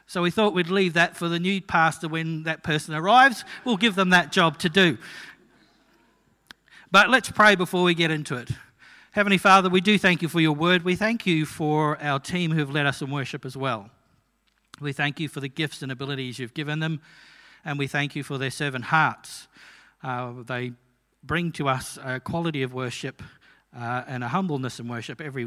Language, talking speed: English, 205 wpm